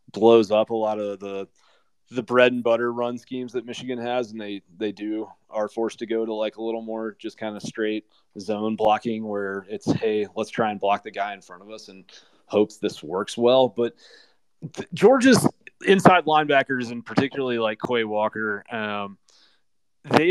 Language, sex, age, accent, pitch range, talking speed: English, male, 20-39, American, 110-125 Hz, 185 wpm